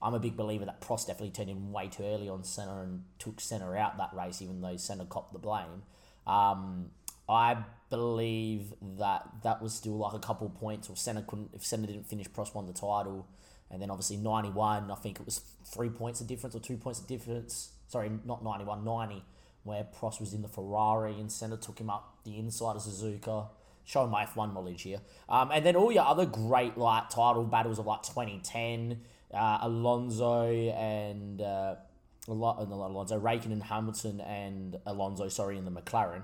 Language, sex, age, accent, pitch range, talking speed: English, male, 20-39, Australian, 100-115 Hz, 200 wpm